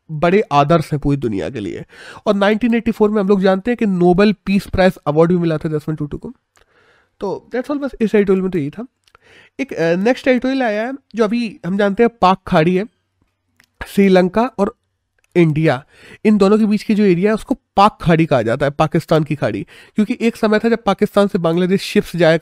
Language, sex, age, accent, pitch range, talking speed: Hindi, male, 30-49, native, 165-220 Hz, 210 wpm